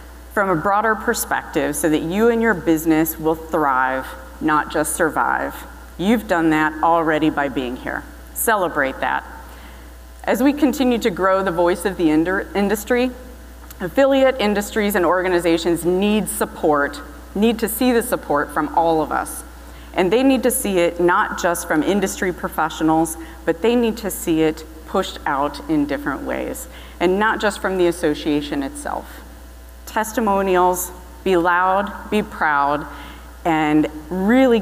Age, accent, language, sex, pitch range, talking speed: 40-59, American, English, female, 145-195 Hz, 145 wpm